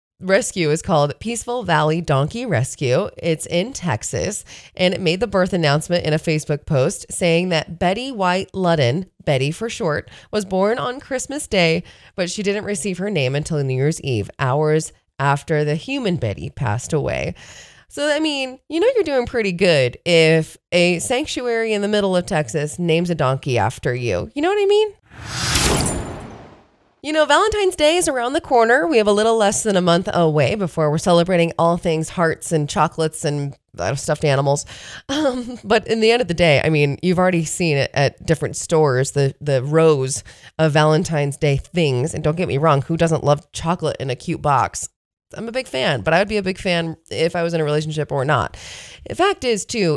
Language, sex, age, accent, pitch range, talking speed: English, female, 20-39, American, 150-210 Hz, 195 wpm